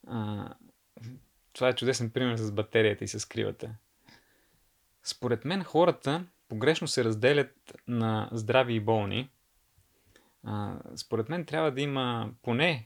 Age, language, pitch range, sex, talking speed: 30-49, Bulgarian, 110-140 Hz, male, 115 wpm